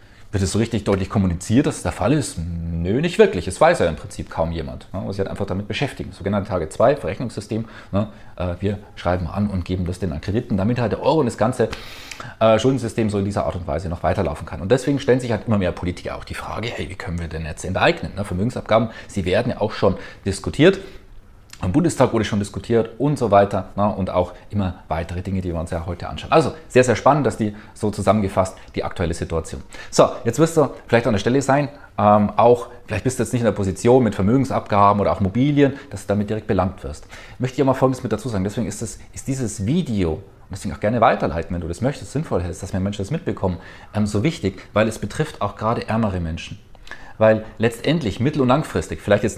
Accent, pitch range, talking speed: German, 95-125 Hz, 235 wpm